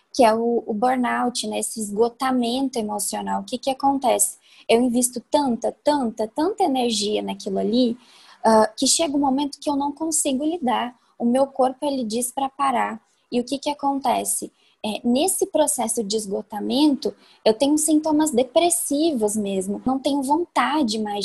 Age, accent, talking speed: 10-29, Brazilian, 155 wpm